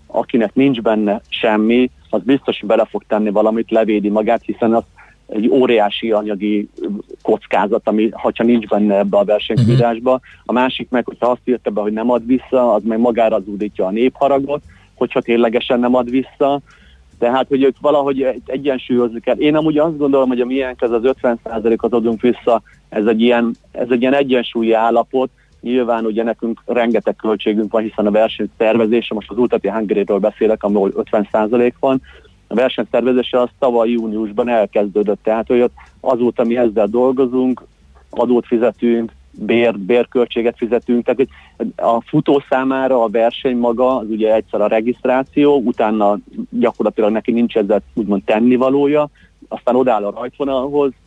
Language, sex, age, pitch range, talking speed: Hungarian, male, 30-49, 110-130 Hz, 155 wpm